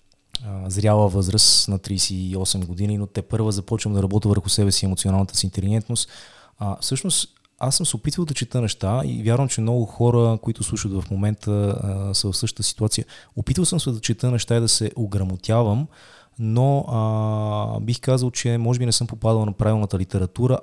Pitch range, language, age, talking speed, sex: 105-120 Hz, Bulgarian, 20-39, 180 wpm, male